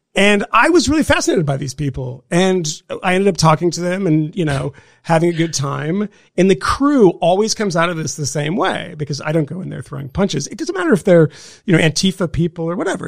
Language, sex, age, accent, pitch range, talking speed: English, male, 40-59, American, 150-205 Hz, 240 wpm